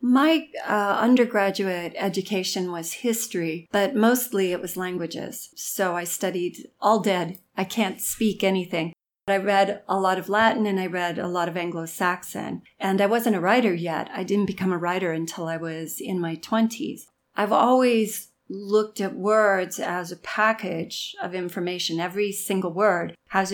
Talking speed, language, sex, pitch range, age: 165 wpm, Swedish, female, 175-210 Hz, 40-59